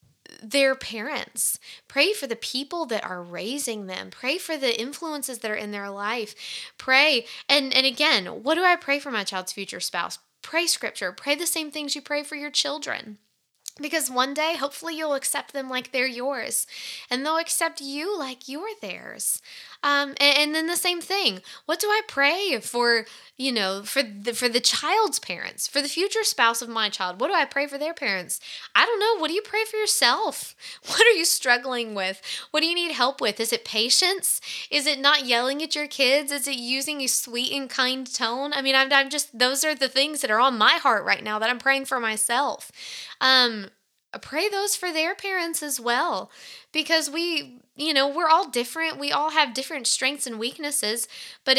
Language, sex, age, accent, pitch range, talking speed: English, female, 10-29, American, 240-310 Hz, 205 wpm